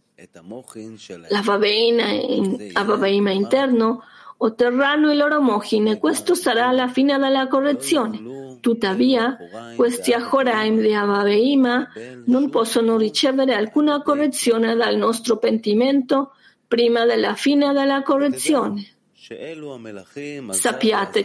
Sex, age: female, 40-59